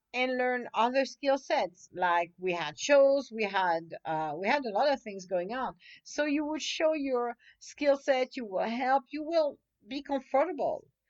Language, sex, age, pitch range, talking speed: English, female, 50-69, 175-265 Hz, 185 wpm